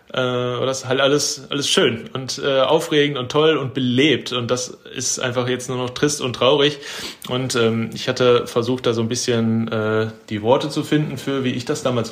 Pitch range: 115-135 Hz